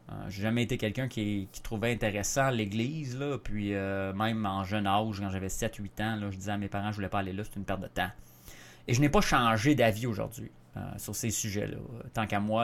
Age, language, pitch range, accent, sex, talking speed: 30-49, French, 100-140 Hz, Canadian, male, 240 wpm